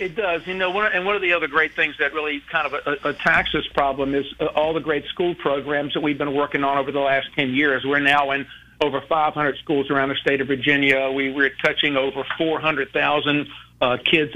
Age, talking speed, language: 50-69, 235 wpm, English